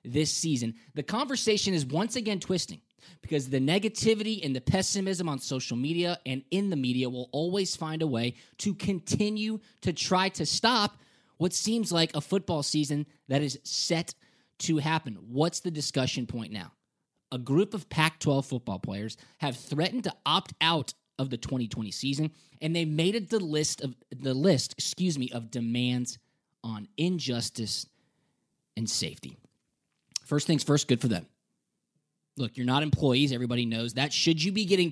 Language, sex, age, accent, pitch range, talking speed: English, male, 20-39, American, 125-175 Hz, 170 wpm